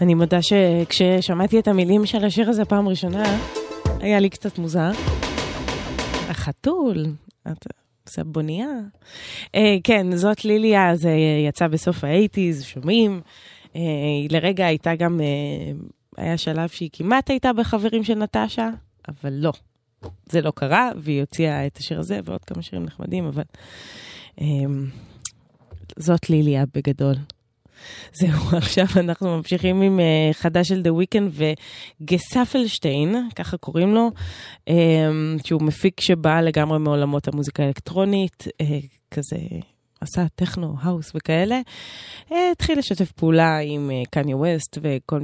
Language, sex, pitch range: Hebrew, female, 140-185 Hz